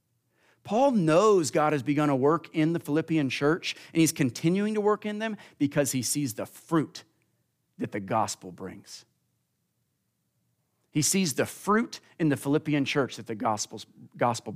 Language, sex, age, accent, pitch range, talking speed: English, male, 40-59, American, 110-160 Hz, 155 wpm